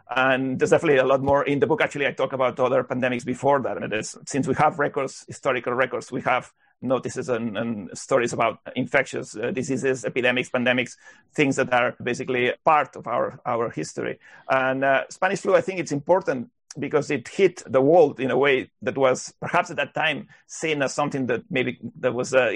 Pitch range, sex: 130-155 Hz, male